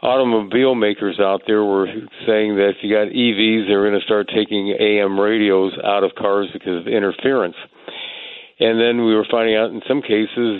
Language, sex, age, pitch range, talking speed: English, male, 50-69, 100-110 Hz, 185 wpm